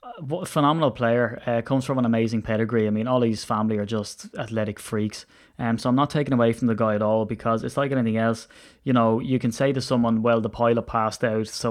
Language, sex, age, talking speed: English, male, 20-39, 245 wpm